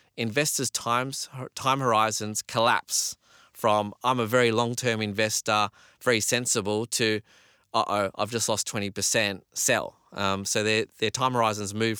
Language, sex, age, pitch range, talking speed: English, male, 20-39, 105-125 Hz, 145 wpm